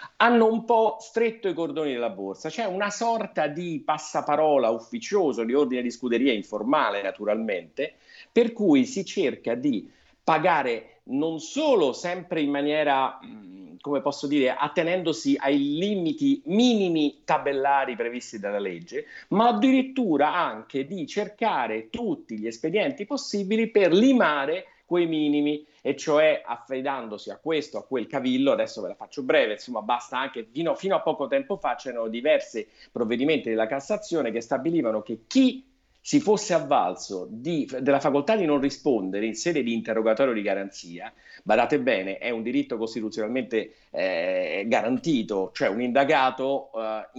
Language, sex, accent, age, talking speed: Italian, male, native, 50-69, 145 wpm